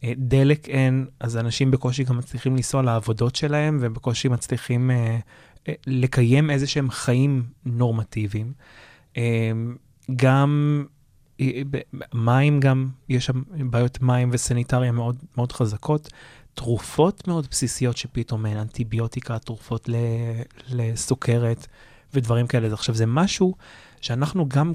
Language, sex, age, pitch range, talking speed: Hebrew, male, 20-39, 120-140 Hz, 115 wpm